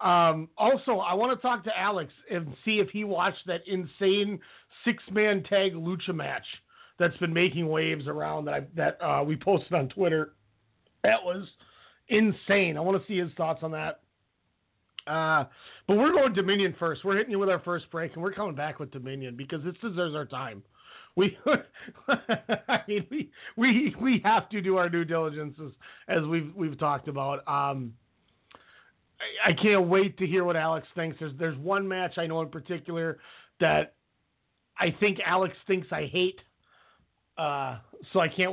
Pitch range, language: 150-190 Hz, English